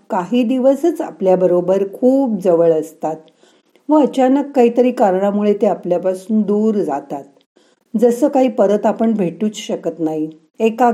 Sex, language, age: female, Marathi, 50-69